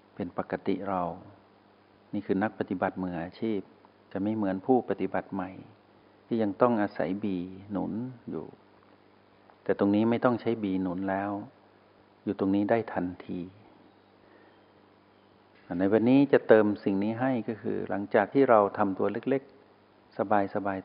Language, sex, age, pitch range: Thai, male, 60-79, 95-110 Hz